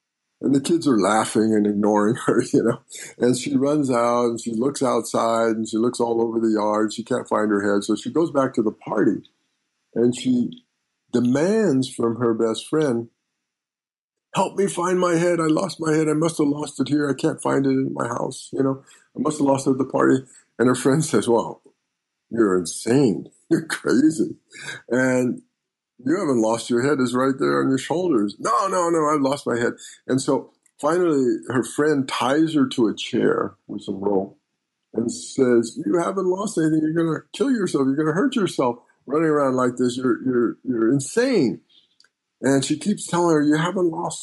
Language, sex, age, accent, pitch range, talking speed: English, male, 50-69, American, 115-155 Hz, 200 wpm